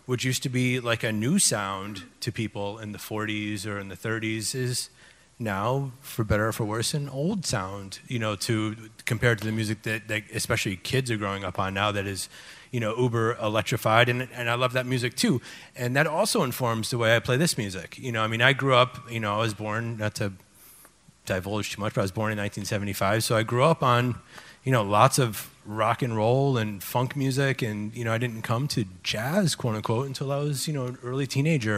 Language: English